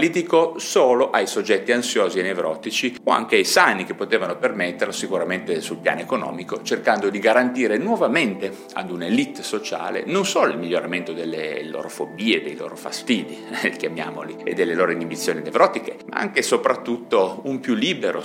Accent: native